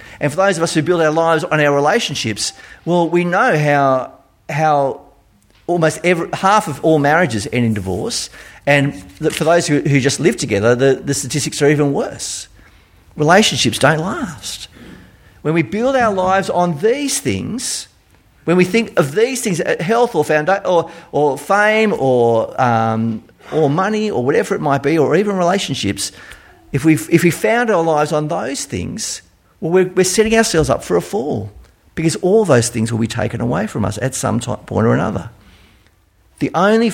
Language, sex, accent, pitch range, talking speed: English, male, Australian, 115-180 Hz, 175 wpm